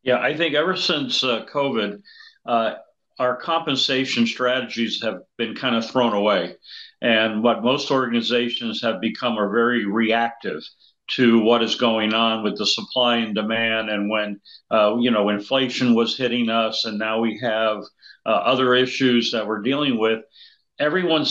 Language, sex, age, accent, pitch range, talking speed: English, male, 50-69, American, 115-135 Hz, 160 wpm